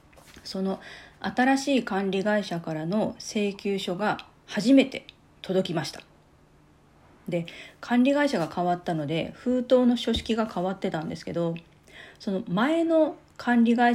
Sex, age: female, 40-59